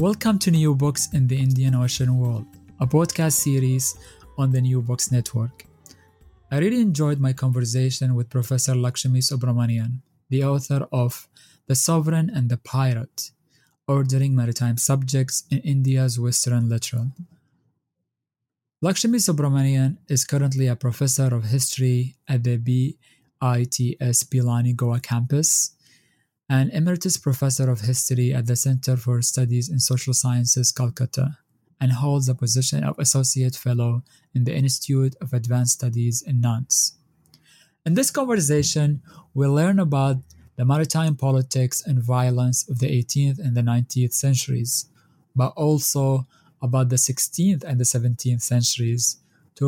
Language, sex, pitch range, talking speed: English, male, 125-145 Hz, 135 wpm